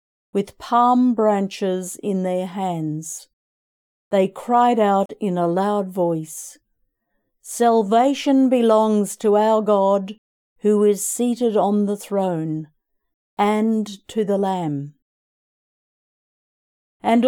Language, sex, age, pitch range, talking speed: English, female, 50-69, 185-235 Hz, 100 wpm